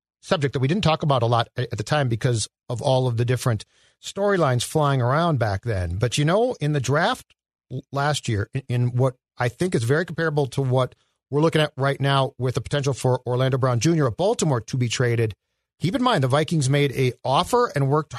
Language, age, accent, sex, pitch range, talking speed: English, 50-69, American, male, 130-180 Hz, 220 wpm